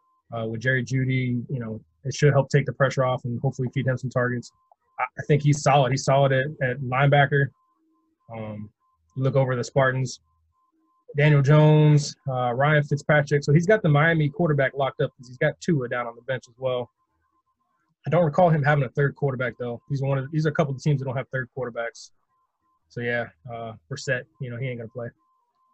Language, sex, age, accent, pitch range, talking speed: English, male, 20-39, American, 125-150 Hz, 210 wpm